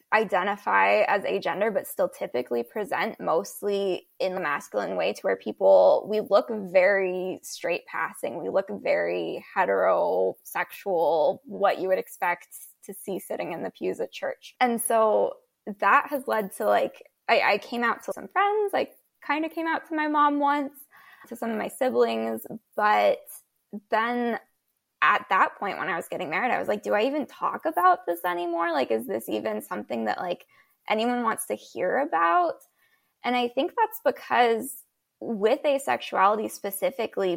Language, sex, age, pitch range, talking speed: English, female, 10-29, 200-285 Hz, 170 wpm